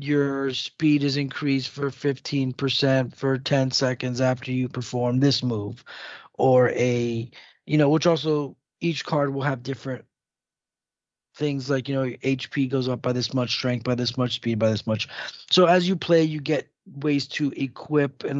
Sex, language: male, English